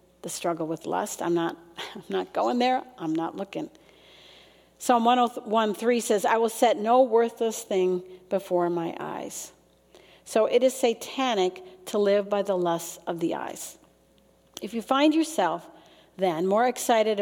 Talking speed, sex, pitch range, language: 155 wpm, female, 180-230 Hz, English